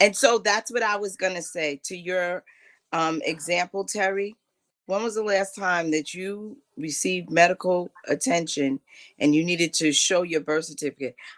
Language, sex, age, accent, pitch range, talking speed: English, female, 40-59, American, 160-225 Hz, 170 wpm